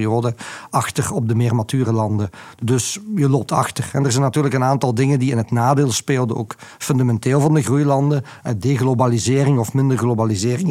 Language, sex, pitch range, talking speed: Dutch, male, 120-145 Hz, 180 wpm